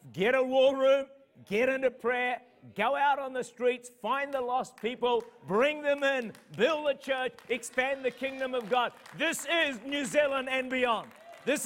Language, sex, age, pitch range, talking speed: English, male, 50-69, 195-265 Hz, 175 wpm